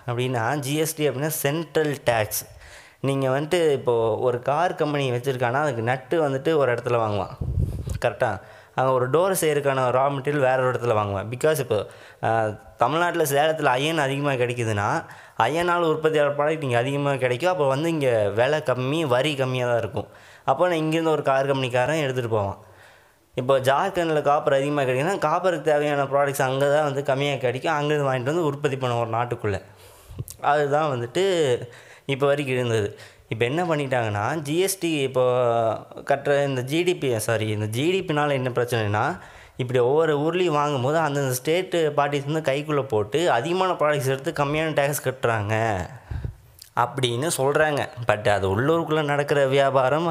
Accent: native